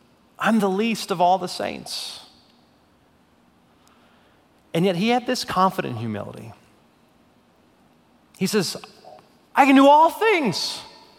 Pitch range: 115-145 Hz